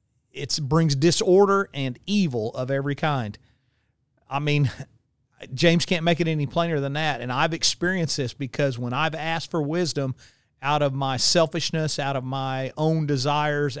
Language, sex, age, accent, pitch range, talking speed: English, male, 40-59, American, 130-155 Hz, 160 wpm